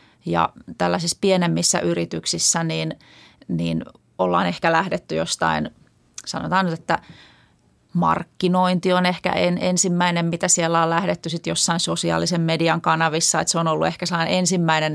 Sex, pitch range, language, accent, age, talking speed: female, 165-185 Hz, Finnish, native, 30-49, 135 wpm